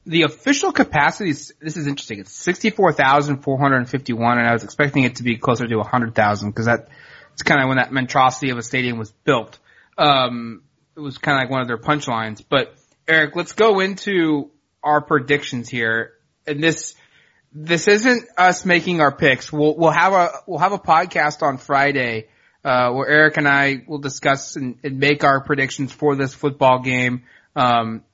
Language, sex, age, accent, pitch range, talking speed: English, male, 20-39, American, 130-170 Hz, 200 wpm